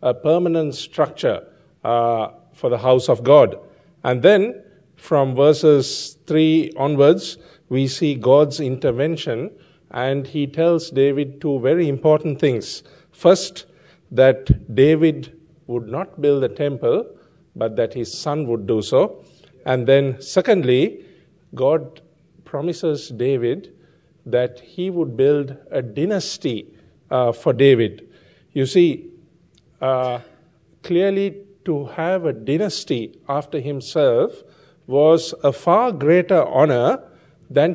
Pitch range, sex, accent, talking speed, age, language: 135-165 Hz, male, Indian, 115 wpm, 50-69, English